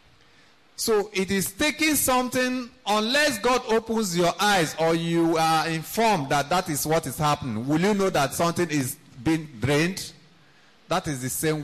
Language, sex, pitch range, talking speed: English, male, 150-225 Hz, 165 wpm